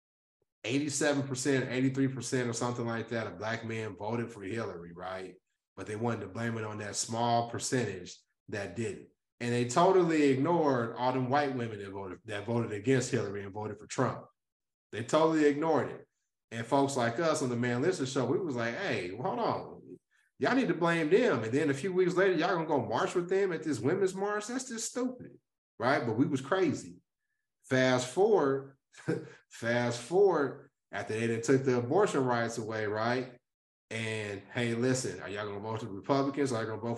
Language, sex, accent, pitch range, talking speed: English, male, American, 115-140 Hz, 195 wpm